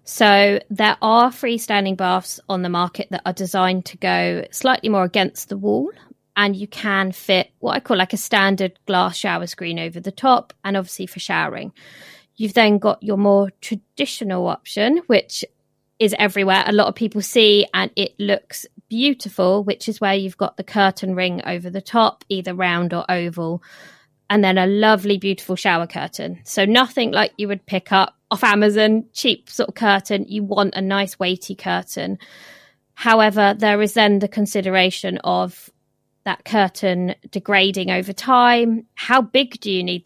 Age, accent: 20-39, British